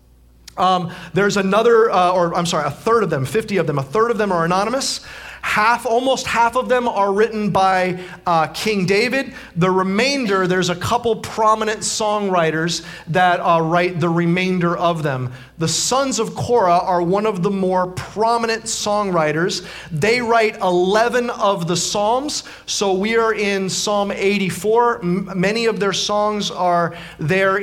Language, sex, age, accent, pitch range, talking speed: English, male, 30-49, American, 155-200 Hz, 165 wpm